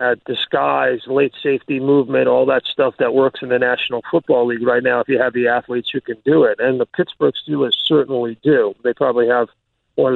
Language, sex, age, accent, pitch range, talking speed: English, male, 40-59, American, 125-165 Hz, 215 wpm